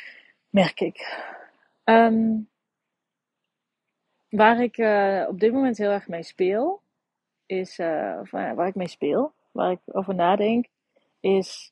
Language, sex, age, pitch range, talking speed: Dutch, female, 30-49, 185-230 Hz, 135 wpm